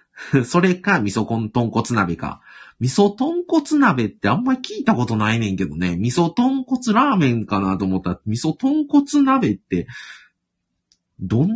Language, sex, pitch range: Japanese, male, 95-155 Hz